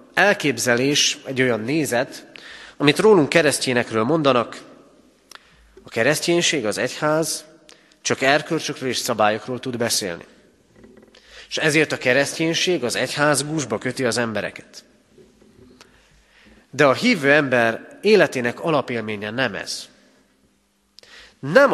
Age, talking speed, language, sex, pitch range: 30-49, 100 wpm, Hungarian, male, 115-155 Hz